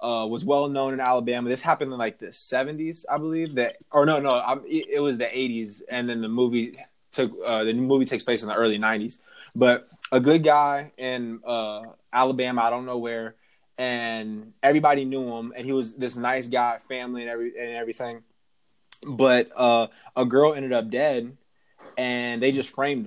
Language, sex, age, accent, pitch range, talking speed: English, male, 20-39, American, 120-145 Hz, 200 wpm